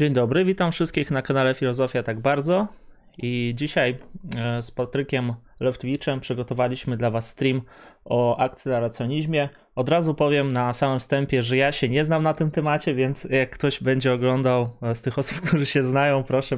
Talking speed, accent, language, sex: 165 wpm, native, Polish, male